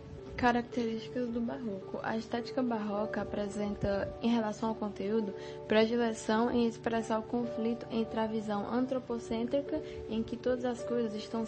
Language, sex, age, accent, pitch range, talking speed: Portuguese, female, 10-29, Brazilian, 205-240 Hz, 135 wpm